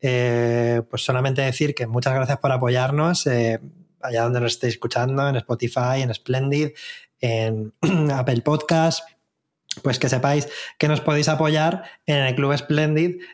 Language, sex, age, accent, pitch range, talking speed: Spanish, male, 20-39, Spanish, 120-145 Hz, 150 wpm